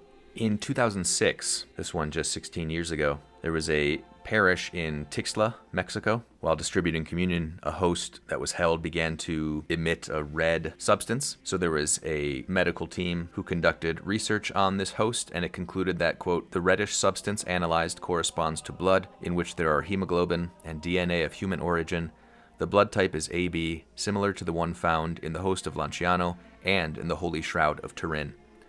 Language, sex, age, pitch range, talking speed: English, male, 30-49, 80-90 Hz, 180 wpm